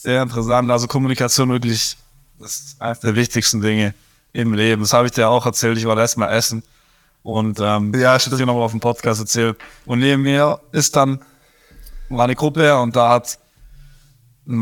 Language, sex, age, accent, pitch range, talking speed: German, male, 20-39, German, 120-150 Hz, 205 wpm